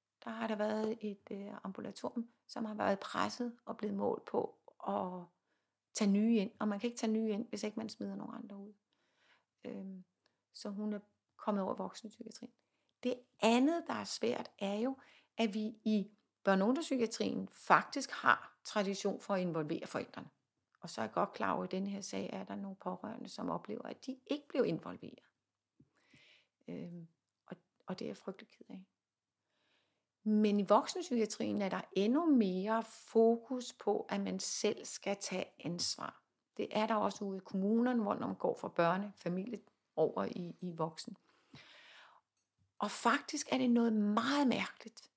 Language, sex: Danish, female